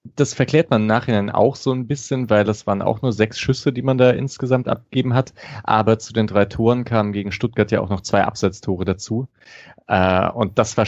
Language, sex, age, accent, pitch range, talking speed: German, male, 30-49, German, 100-120 Hz, 215 wpm